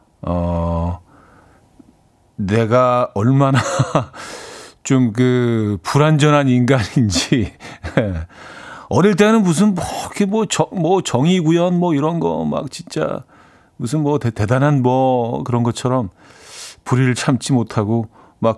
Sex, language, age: male, Korean, 40-59